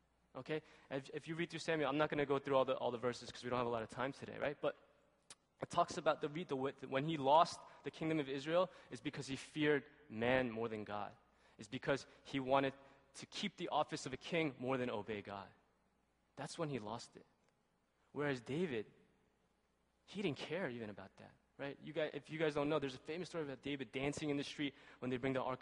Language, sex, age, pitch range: Korean, male, 20-39, 120-155 Hz